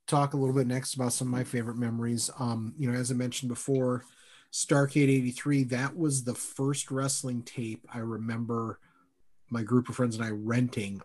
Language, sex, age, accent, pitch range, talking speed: English, male, 30-49, American, 110-135 Hz, 190 wpm